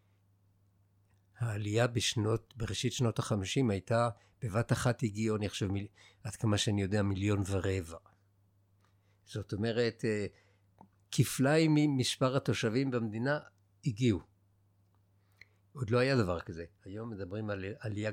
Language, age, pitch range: Hebrew, 60-79, 100-120 Hz